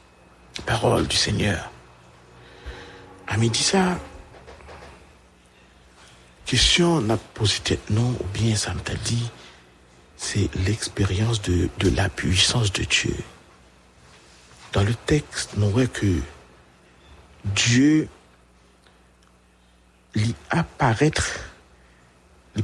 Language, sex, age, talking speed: English, male, 60-79, 85 wpm